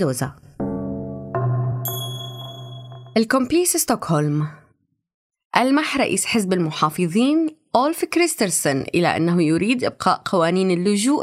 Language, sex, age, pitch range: Arabic, female, 20-39, 165-250 Hz